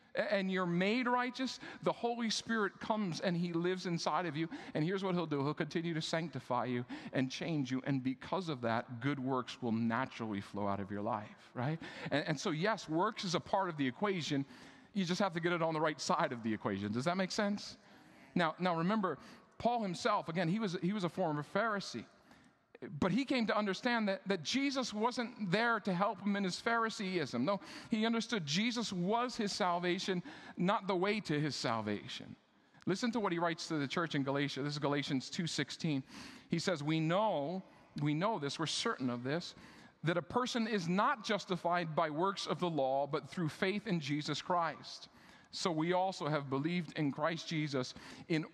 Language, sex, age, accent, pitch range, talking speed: English, male, 40-59, American, 150-205 Hz, 200 wpm